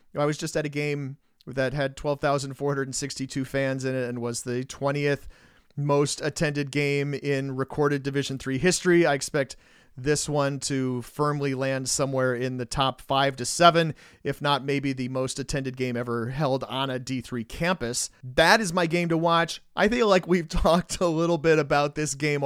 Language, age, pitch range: English, 40-59, 135-165 Hz